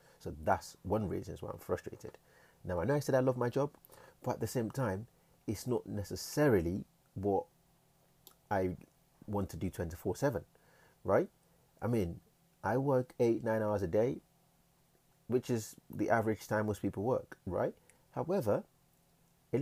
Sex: male